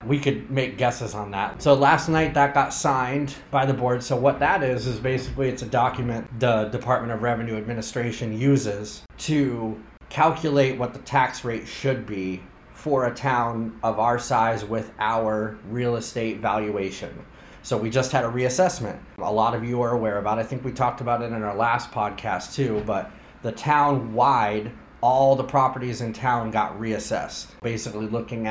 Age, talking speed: 30-49, 180 wpm